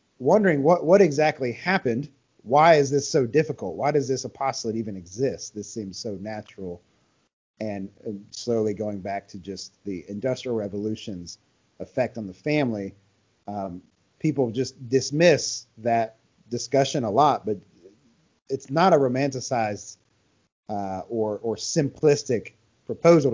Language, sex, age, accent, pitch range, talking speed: English, male, 30-49, American, 100-135 Hz, 135 wpm